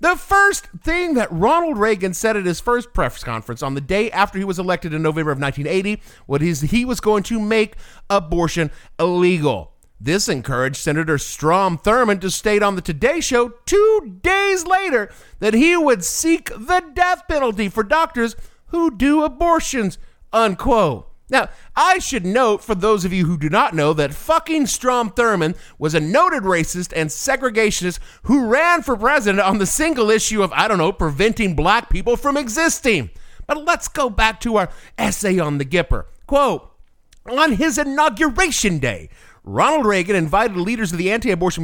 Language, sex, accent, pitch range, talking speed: English, male, American, 165-255 Hz, 170 wpm